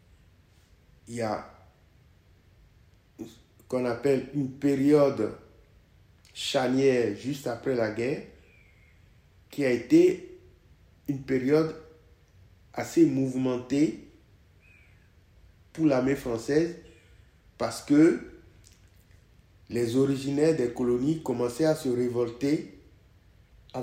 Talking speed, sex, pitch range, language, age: 85 wpm, male, 100-145 Hz, French, 50-69